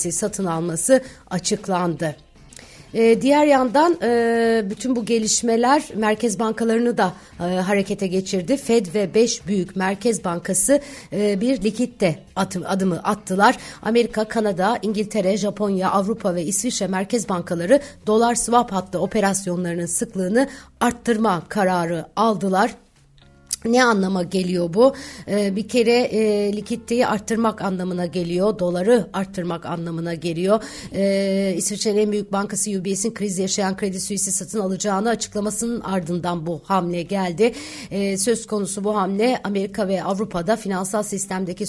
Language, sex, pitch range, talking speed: Turkish, female, 185-225 Hz, 125 wpm